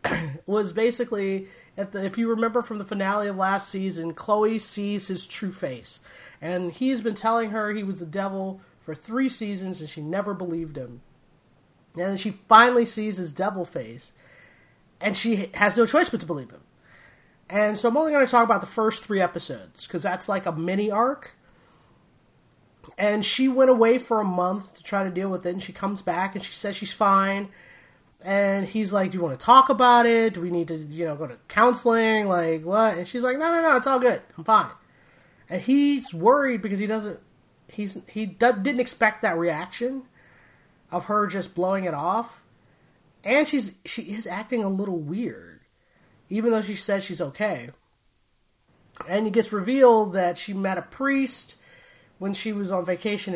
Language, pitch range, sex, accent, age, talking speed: English, 180-225 Hz, male, American, 30-49, 190 wpm